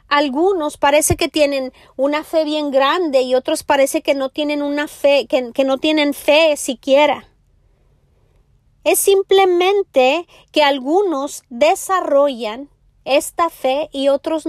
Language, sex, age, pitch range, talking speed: Spanish, female, 30-49, 270-335 Hz, 130 wpm